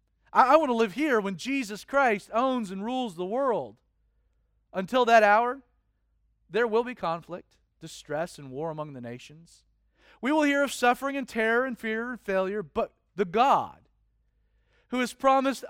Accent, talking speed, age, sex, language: American, 165 wpm, 40-59, male, English